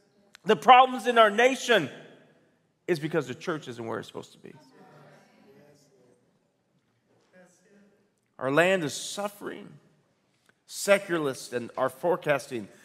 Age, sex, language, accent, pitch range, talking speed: 40-59, male, English, American, 130-185 Hz, 105 wpm